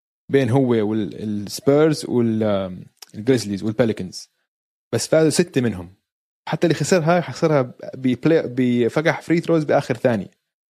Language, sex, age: Arabic, male, 20-39